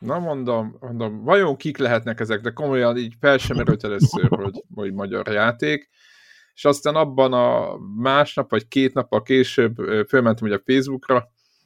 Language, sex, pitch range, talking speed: Hungarian, male, 110-135 Hz, 160 wpm